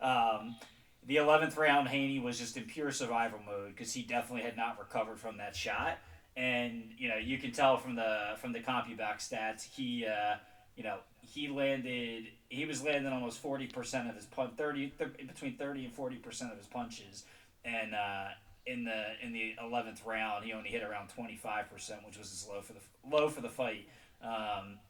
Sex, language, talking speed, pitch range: male, English, 200 wpm, 105-135 Hz